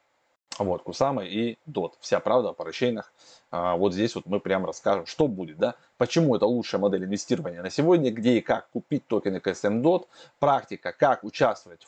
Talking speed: 170 wpm